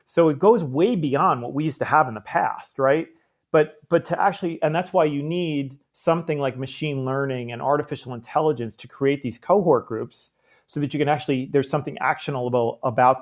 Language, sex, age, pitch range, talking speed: English, male, 40-59, 130-165 Hz, 200 wpm